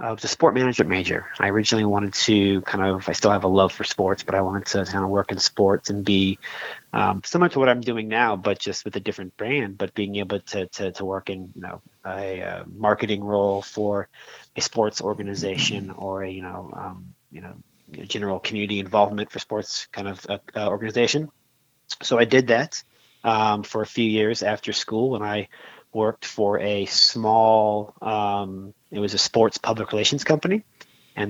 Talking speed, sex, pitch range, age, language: 200 wpm, male, 100-110 Hz, 30-49, English